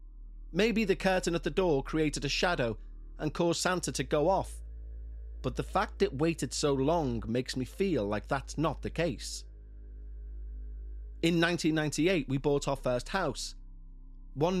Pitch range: 105-165 Hz